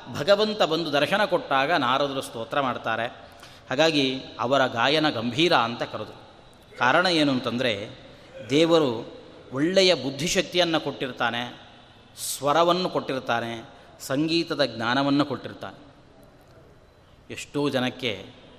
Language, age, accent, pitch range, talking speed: Kannada, 30-49, native, 125-170 Hz, 85 wpm